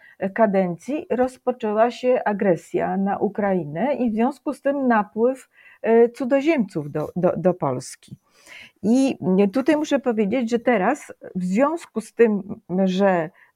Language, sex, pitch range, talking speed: Polish, female, 190-250 Hz, 125 wpm